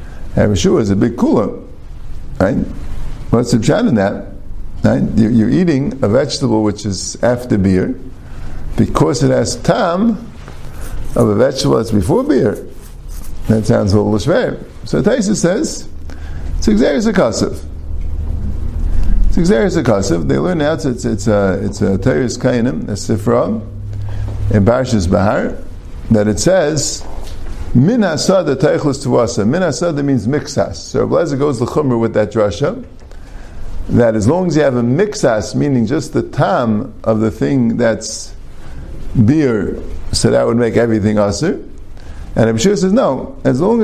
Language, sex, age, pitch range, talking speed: English, male, 50-69, 85-130 Hz, 145 wpm